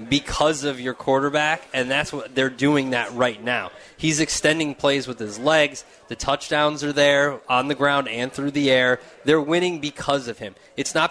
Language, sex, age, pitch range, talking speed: English, male, 20-39, 135-160 Hz, 195 wpm